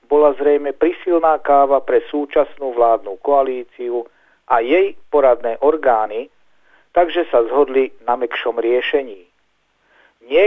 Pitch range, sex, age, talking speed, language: 125-180 Hz, male, 50-69, 110 wpm, Slovak